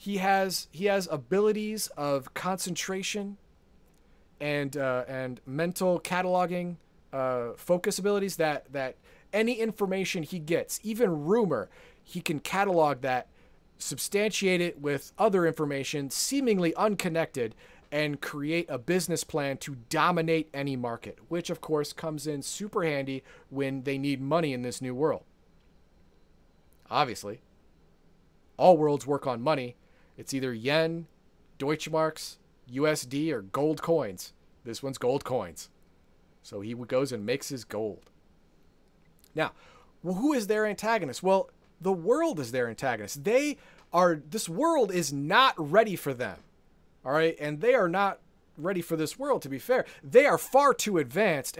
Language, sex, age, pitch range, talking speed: English, male, 30-49, 140-190 Hz, 145 wpm